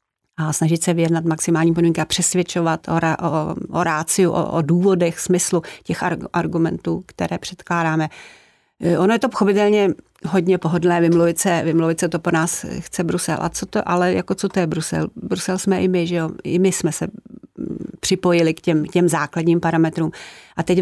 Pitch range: 165-180 Hz